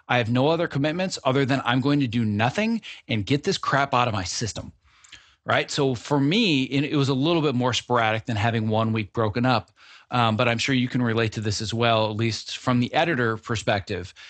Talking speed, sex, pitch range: 225 wpm, male, 110-140 Hz